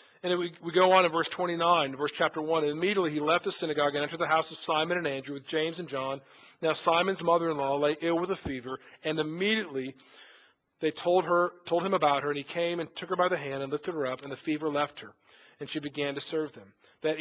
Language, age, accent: English, 40-59, American